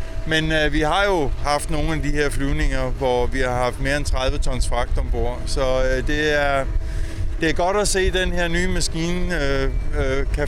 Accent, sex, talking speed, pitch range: native, male, 220 wpm, 125-160 Hz